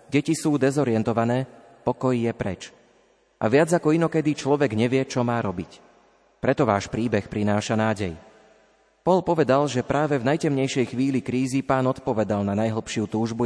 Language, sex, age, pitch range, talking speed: Slovak, male, 30-49, 110-135 Hz, 145 wpm